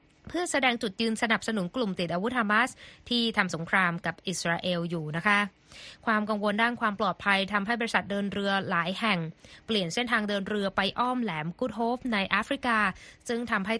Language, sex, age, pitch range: Thai, female, 20-39, 180-230 Hz